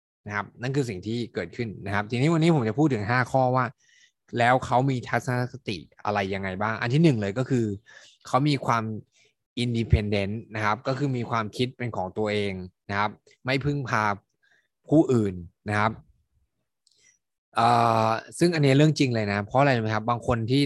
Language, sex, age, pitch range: Thai, male, 20-39, 105-135 Hz